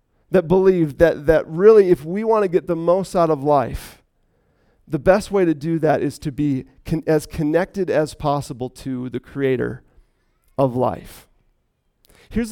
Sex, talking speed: male, 170 wpm